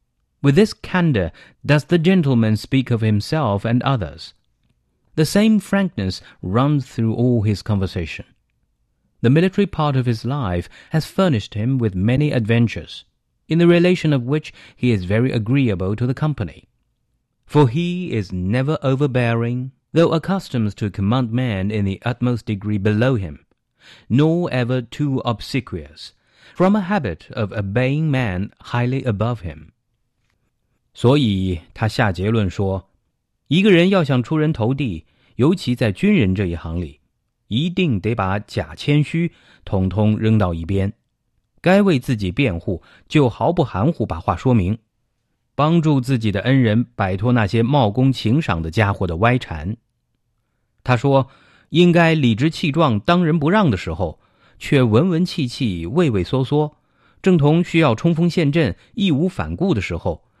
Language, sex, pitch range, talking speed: English, male, 105-150 Hz, 75 wpm